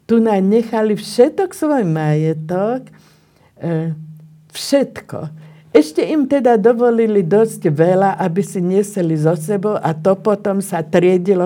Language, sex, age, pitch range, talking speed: Slovak, female, 50-69, 165-220 Hz, 125 wpm